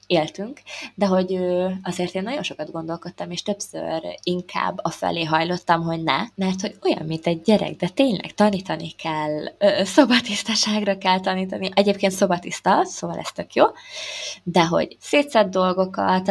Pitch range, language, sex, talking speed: 165-210 Hz, Hungarian, female, 145 wpm